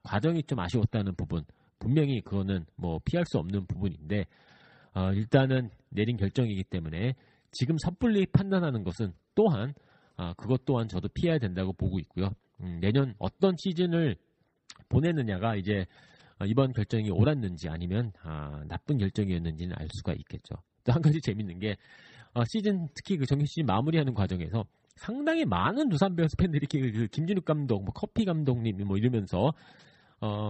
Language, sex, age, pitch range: Korean, male, 40-59, 95-155 Hz